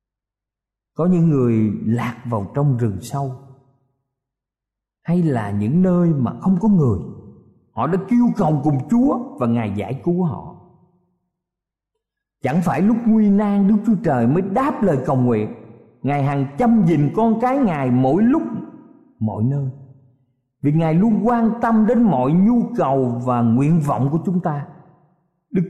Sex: male